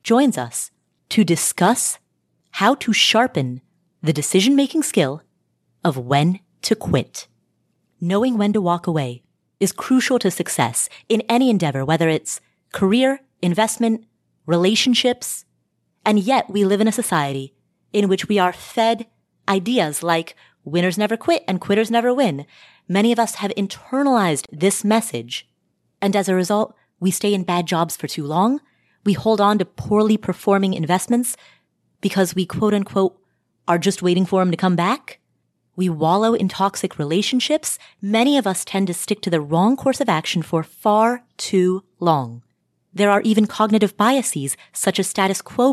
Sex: female